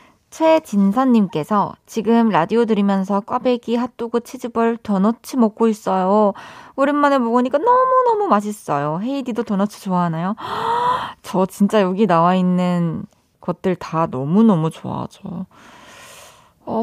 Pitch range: 185-245 Hz